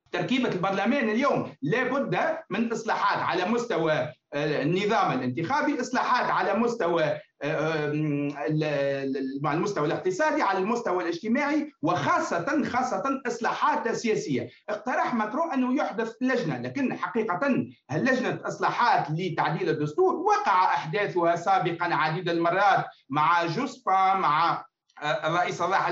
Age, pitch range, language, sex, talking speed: 40-59, 170-265 Hz, Arabic, male, 100 wpm